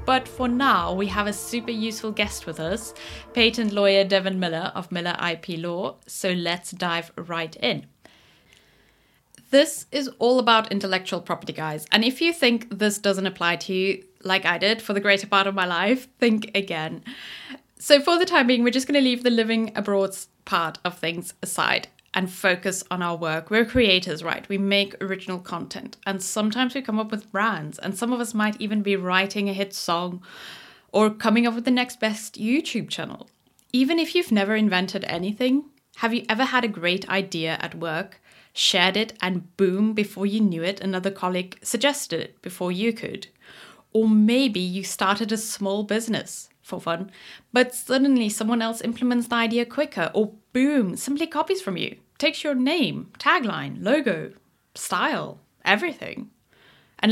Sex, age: female, 10-29